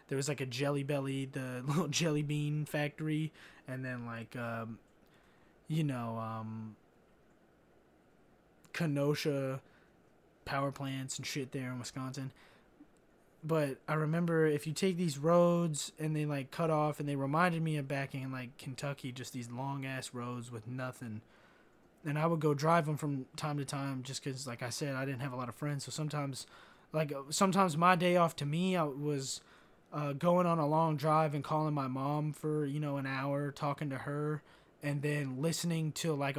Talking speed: 180 wpm